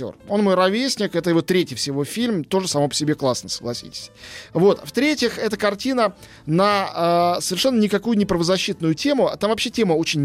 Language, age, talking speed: Russian, 20-39, 170 wpm